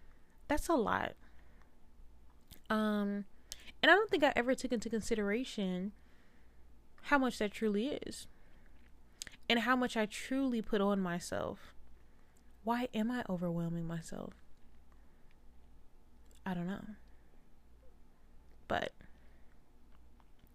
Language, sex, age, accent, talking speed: English, female, 20-39, American, 100 wpm